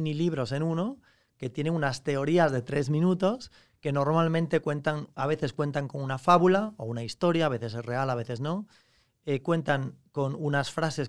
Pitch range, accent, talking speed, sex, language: 130-160 Hz, Spanish, 190 wpm, male, Spanish